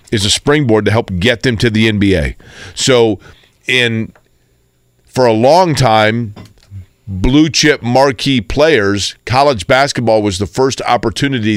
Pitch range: 100-125 Hz